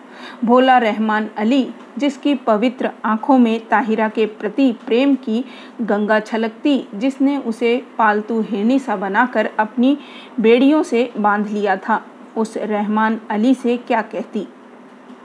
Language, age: Hindi, 40-59